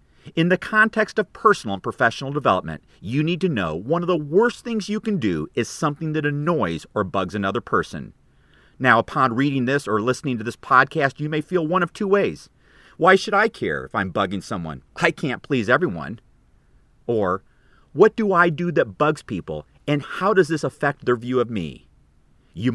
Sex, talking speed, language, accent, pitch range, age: male, 195 wpm, English, American, 115-175 Hz, 40-59